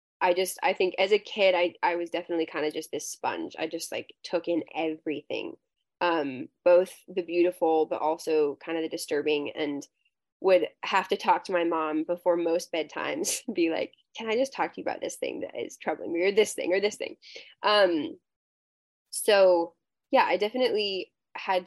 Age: 10-29